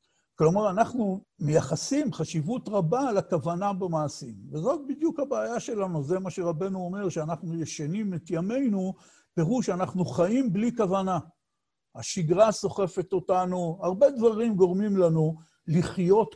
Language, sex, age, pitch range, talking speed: Hebrew, male, 60-79, 145-195 Hz, 115 wpm